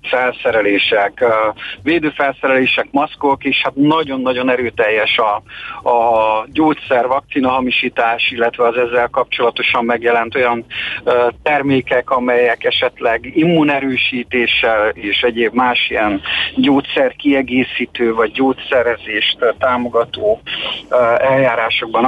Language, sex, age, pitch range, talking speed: Hungarian, male, 50-69, 120-135 Hz, 80 wpm